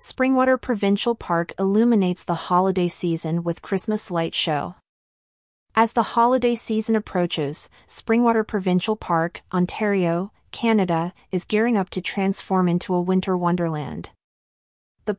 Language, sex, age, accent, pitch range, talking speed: English, female, 30-49, American, 175-220 Hz, 125 wpm